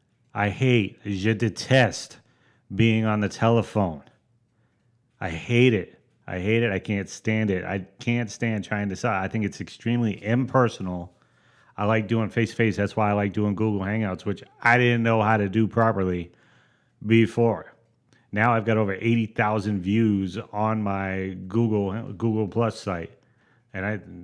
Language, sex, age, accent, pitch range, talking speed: English, male, 30-49, American, 95-115 Hz, 155 wpm